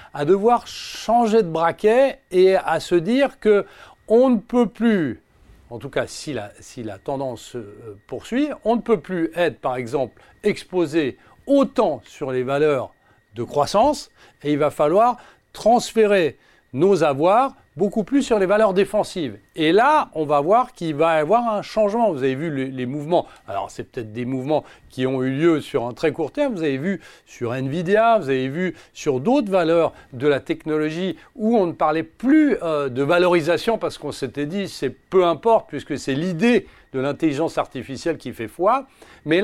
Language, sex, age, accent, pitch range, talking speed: French, male, 40-59, French, 150-225 Hz, 185 wpm